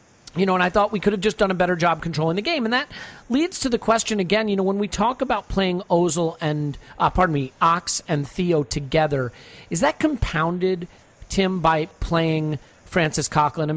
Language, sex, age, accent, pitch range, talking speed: English, male, 40-59, American, 145-180 Hz, 210 wpm